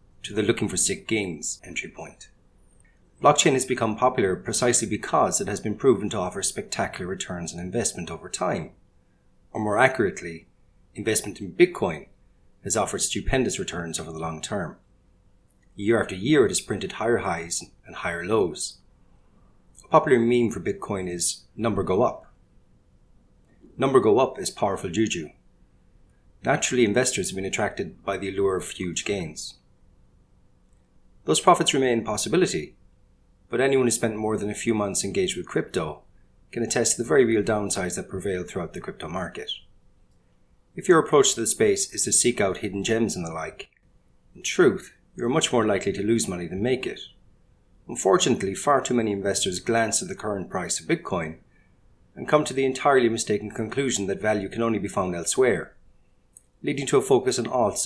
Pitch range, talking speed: 95-125 Hz, 175 wpm